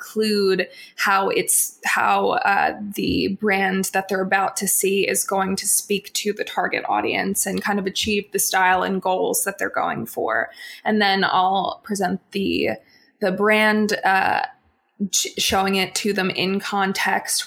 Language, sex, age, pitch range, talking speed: English, female, 20-39, 195-210 Hz, 160 wpm